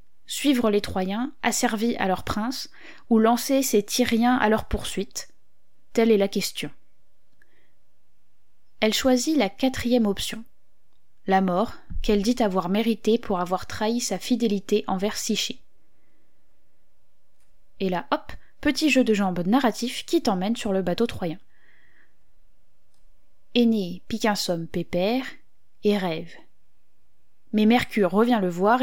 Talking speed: 130 wpm